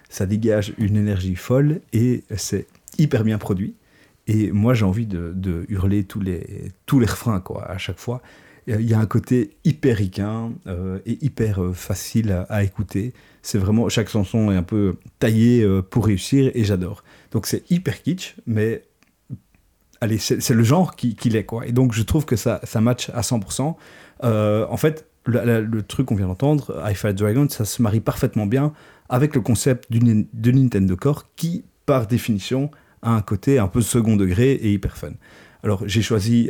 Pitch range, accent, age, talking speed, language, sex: 100-120 Hz, French, 30-49, 195 wpm, French, male